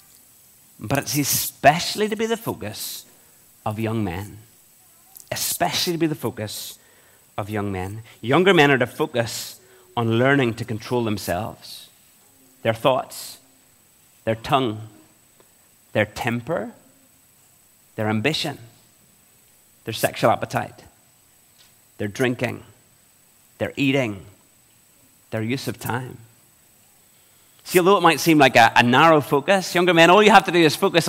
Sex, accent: male, British